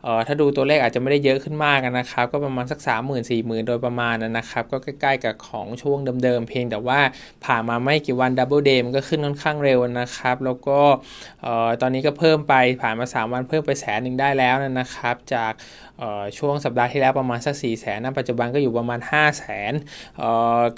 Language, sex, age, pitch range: Thai, male, 20-39, 120-145 Hz